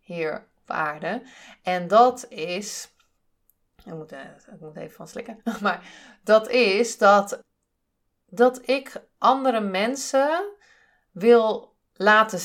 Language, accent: Dutch, Dutch